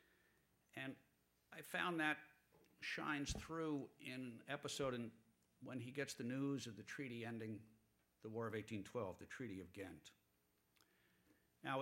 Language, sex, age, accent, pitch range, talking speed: English, male, 60-79, American, 95-135 Hz, 135 wpm